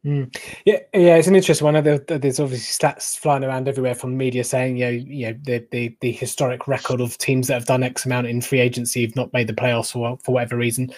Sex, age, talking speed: male, 20-39, 250 wpm